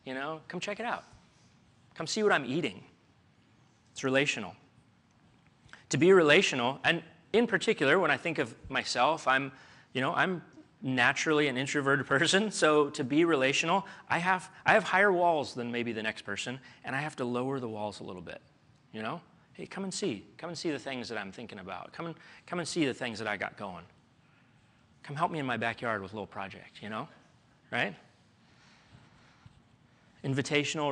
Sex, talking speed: male, 190 wpm